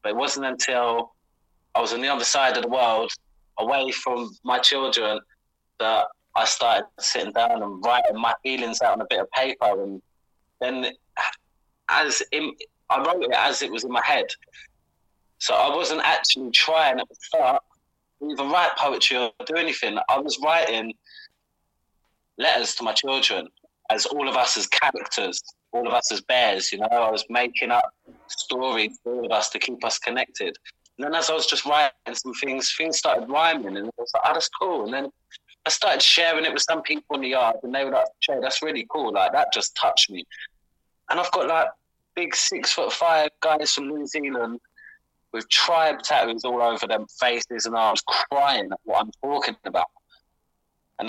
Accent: British